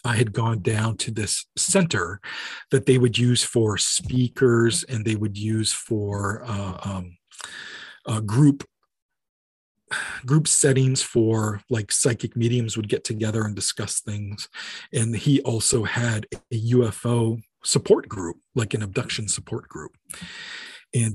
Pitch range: 105-135 Hz